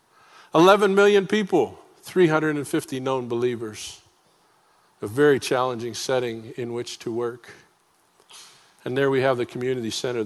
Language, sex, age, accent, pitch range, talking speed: English, male, 50-69, American, 125-160 Hz, 125 wpm